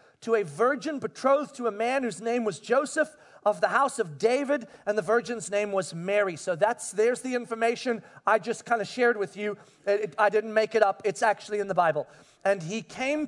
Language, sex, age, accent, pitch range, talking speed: English, male, 40-59, American, 210-275 Hz, 210 wpm